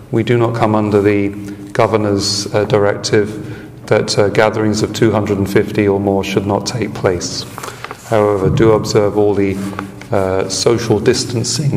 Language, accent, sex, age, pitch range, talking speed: English, British, male, 40-59, 115-145 Hz, 145 wpm